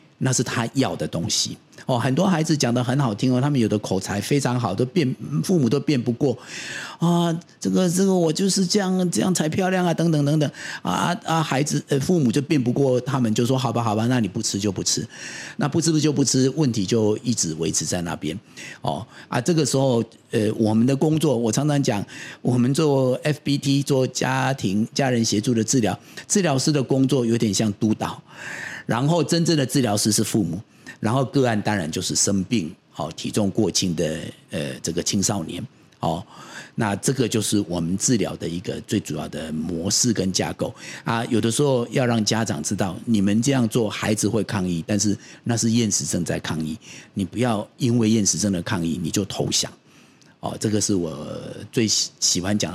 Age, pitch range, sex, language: 50-69, 105-140 Hz, male, Chinese